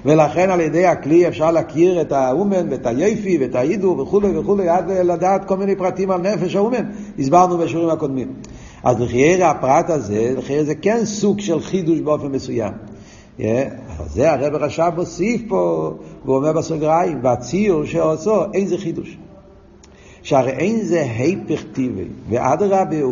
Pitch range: 125-180 Hz